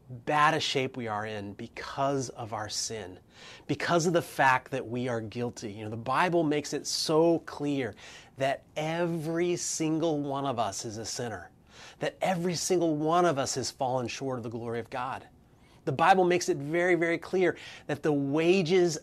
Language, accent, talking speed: English, American, 185 wpm